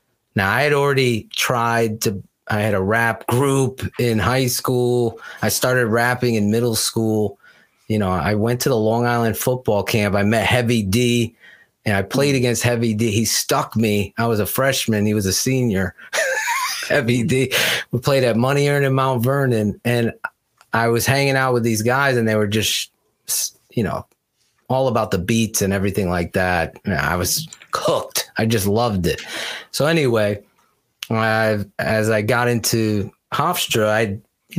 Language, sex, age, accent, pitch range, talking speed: English, male, 30-49, American, 110-130 Hz, 170 wpm